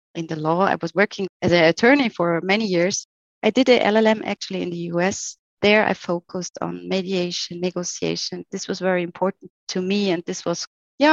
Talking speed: 195 wpm